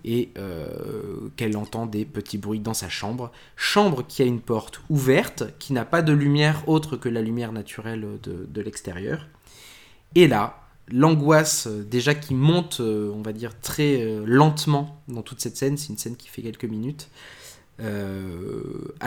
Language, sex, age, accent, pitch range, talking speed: French, male, 20-39, French, 115-150 Hz, 165 wpm